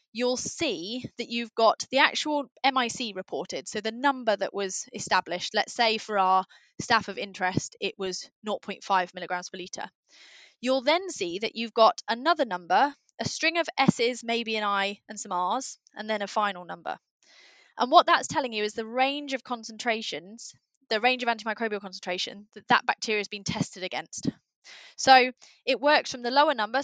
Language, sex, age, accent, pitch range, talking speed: English, female, 20-39, British, 205-255 Hz, 180 wpm